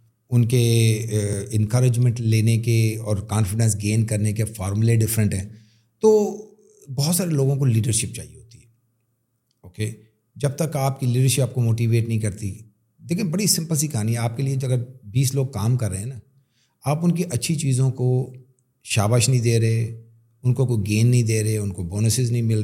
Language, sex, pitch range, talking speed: Urdu, male, 110-140 Hz, 200 wpm